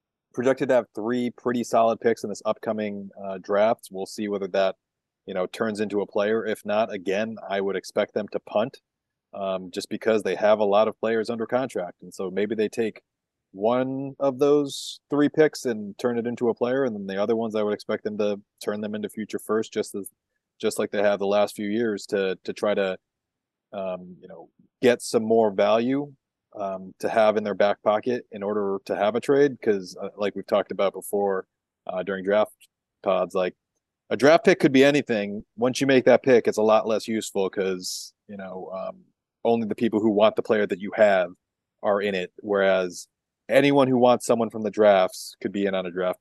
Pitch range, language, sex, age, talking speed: 100-120 Hz, English, male, 30-49, 215 wpm